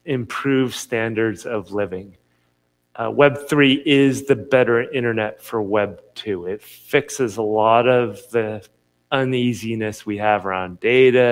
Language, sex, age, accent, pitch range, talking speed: English, male, 30-49, American, 105-135 Hz, 125 wpm